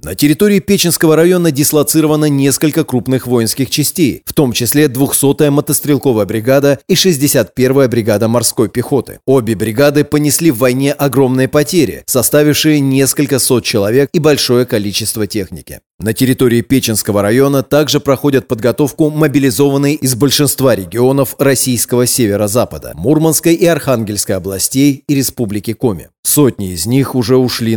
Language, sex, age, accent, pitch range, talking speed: Russian, male, 30-49, native, 115-145 Hz, 130 wpm